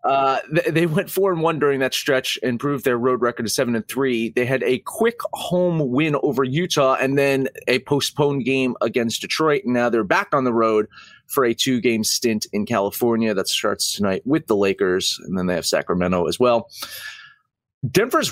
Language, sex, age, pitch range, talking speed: English, male, 30-49, 115-165 Hz, 190 wpm